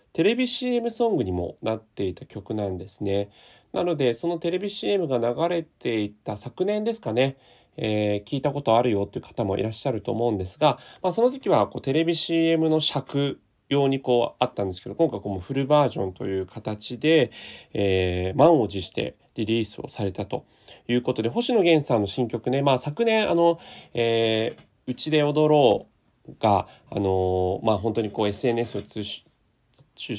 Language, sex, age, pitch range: Japanese, male, 30-49, 105-160 Hz